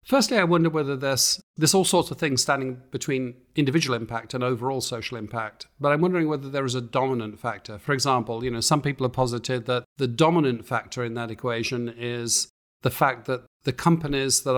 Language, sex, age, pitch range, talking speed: English, male, 50-69, 115-135 Hz, 200 wpm